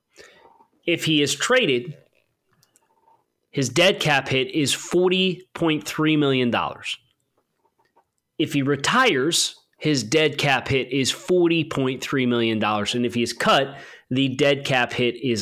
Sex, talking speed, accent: male, 120 wpm, American